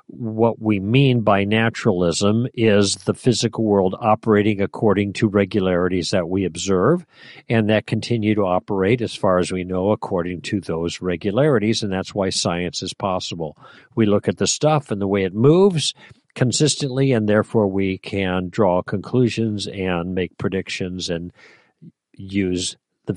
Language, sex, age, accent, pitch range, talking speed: English, male, 50-69, American, 95-130 Hz, 155 wpm